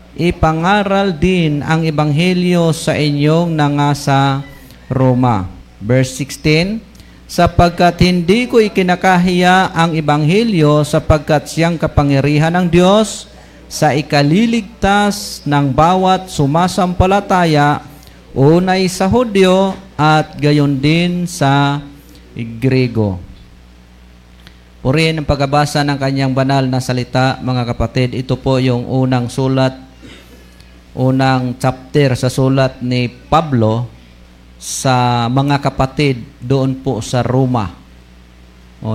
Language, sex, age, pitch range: Filipino, male, 50-69, 120-155 Hz